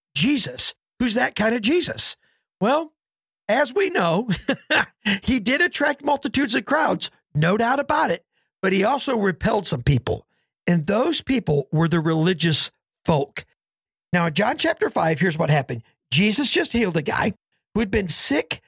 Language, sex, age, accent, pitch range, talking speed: English, male, 50-69, American, 165-255 Hz, 160 wpm